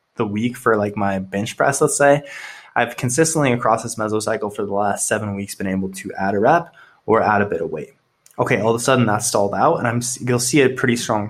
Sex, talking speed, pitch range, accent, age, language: male, 245 wpm, 100-130 Hz, American, 20-39, English